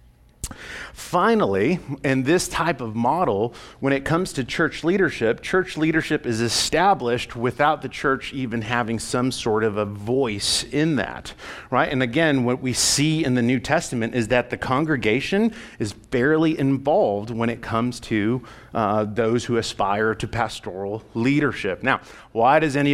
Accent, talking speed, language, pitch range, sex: American, 155 wpm, English, 120-160 Hz, male